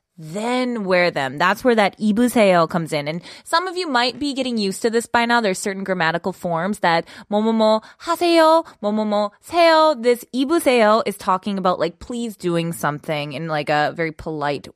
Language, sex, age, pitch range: Korean, female, 20-39, 175-245 Hz